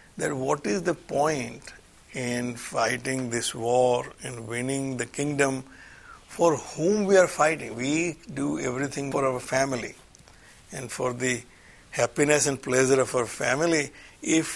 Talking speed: 140 wpm